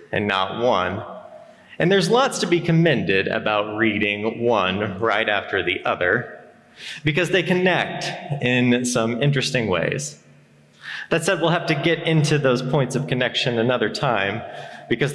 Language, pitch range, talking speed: English, 115-160 Hz, 145 wpm